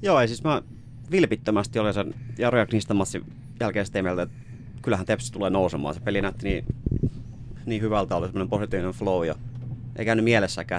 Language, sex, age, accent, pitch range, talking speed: Finnish, male, 30-49, native, 100-120 Hz, 165 wpm